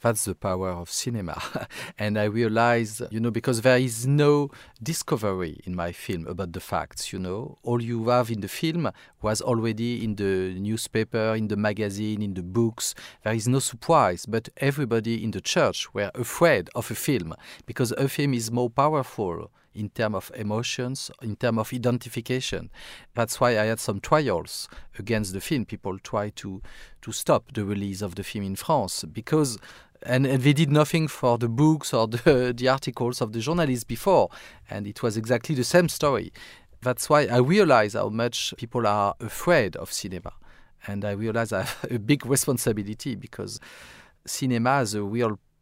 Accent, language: French, English